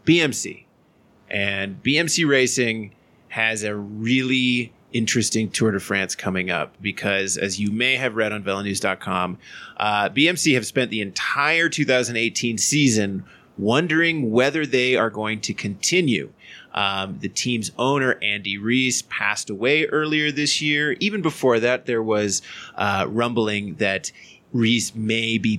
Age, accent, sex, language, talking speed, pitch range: 30-49, American, male, English, 135 wpm, 105-135 Hz